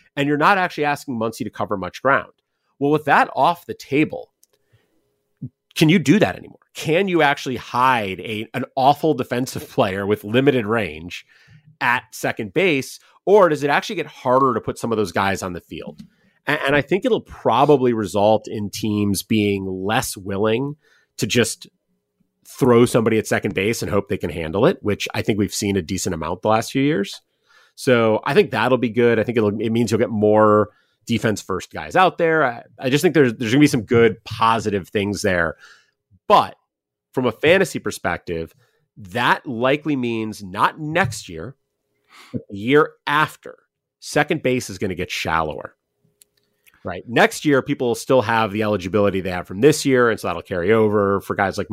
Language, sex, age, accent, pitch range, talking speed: English, male, 30-49, American, 100-135 Hz, 190 wpm